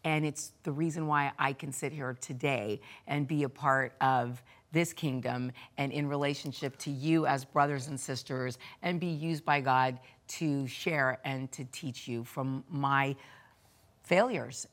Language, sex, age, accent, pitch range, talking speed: English, female, 40-59, American, 130-175 Hz, 165 wpm